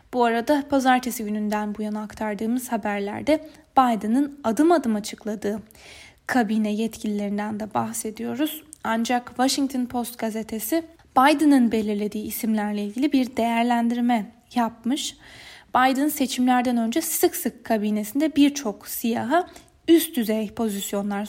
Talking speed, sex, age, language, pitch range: 105 wpm, female, 10-29, Turkish, 215-275 Hz